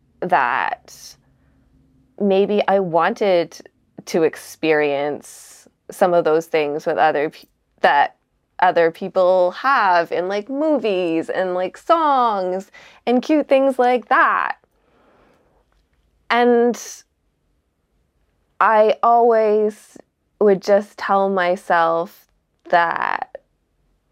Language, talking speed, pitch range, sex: English, 90 wpm, 165-200 Hz, female